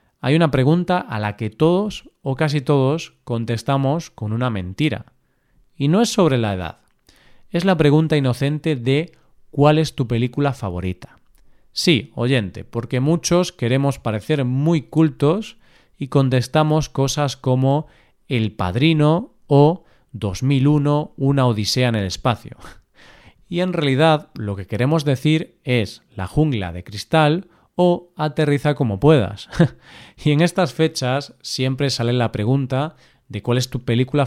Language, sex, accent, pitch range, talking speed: Spanish, male, Spanish, 115-155 Hz, 140 wpm